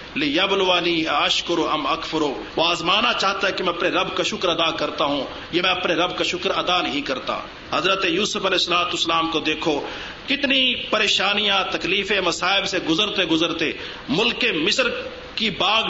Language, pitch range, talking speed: Urdu, 175-225 Hz, 160 wpm